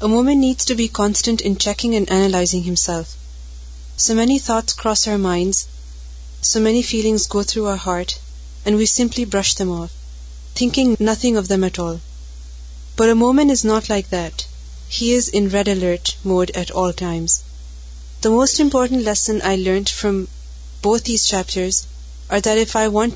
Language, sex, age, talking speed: Urdu, female, 30-49, 175 wpm